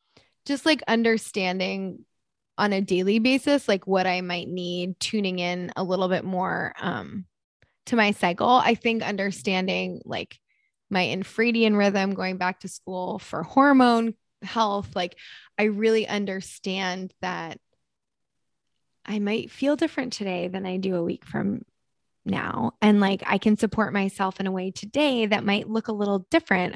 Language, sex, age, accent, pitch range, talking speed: English, female, 20-39, American, 190-245 Hz, 155 wpm